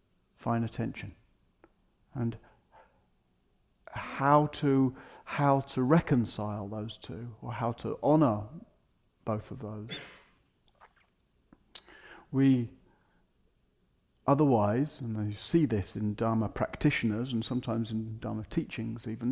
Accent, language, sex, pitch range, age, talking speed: British, English, male, 110-135 Hz, 40-59, 100 wpm